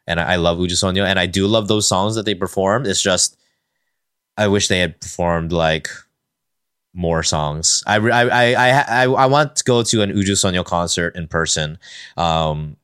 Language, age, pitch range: English, 20-39, 90-115 Hz